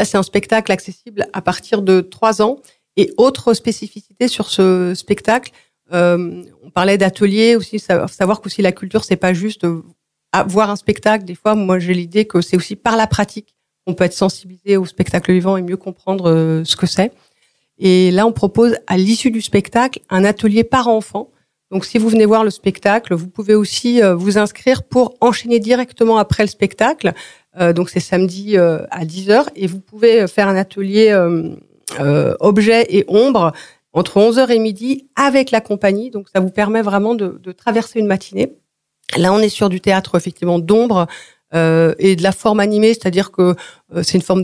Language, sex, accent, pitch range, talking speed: French, female, French, 185-220 Hz, 185 wpm